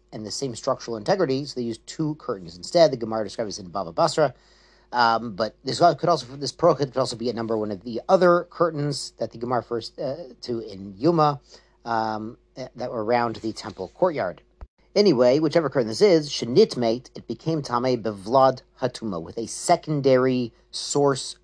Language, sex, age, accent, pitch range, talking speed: English, male, 40-59, American, 110-140 Hz, 180 wpm